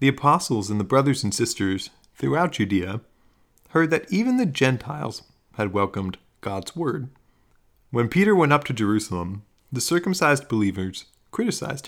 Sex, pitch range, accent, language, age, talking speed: male, 100-150 Hz, American, English, 30-49, 140 wpm